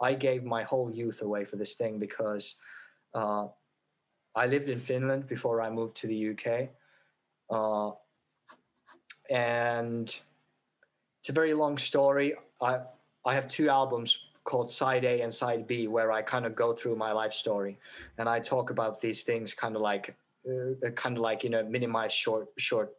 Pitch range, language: 110-130 Hz, English